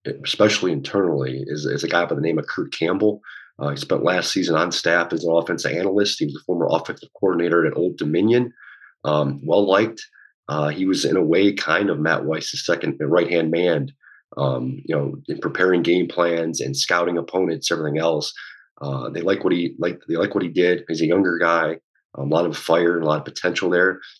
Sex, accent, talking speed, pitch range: male, American, 215 wpm, 80-95 Hz